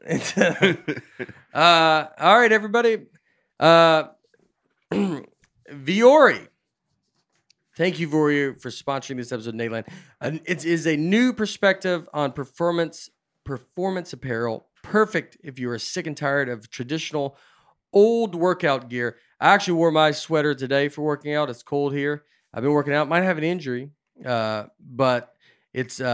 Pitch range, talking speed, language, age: 125-165 Hz, 140 wpm, English, 40-59